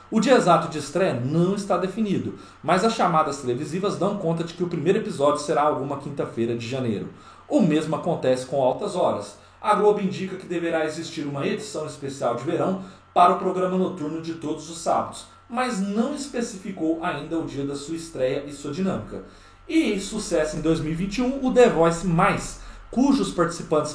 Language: Portuguese